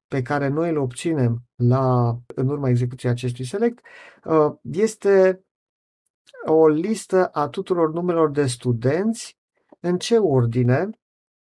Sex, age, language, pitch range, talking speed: male, 50-69, Romanian, 125-170 Hz, 110 wpm